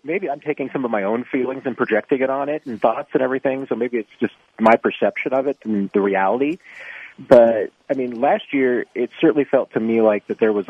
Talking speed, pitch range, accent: 235 wpm, 105-135 Hz, American